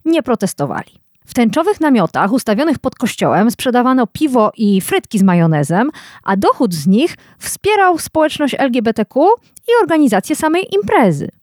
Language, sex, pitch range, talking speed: Polish, female, 200-310 Hz, 130 wpm